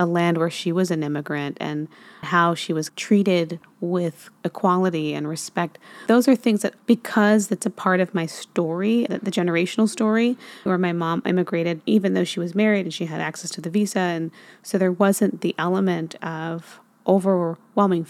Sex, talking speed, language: female, 180 wpm, English